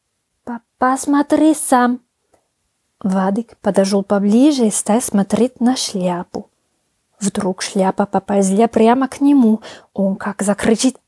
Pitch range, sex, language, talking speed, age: 205-260 Hz, female, Ukrainian, 105 wpm, 20-39